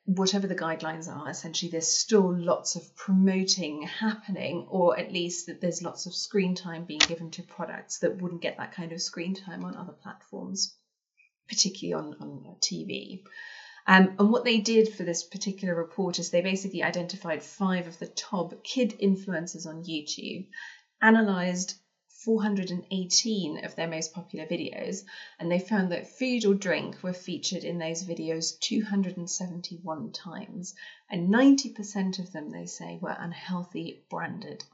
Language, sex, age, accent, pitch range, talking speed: English, female, 30-49, British, 170-200 Hz, 155 wpm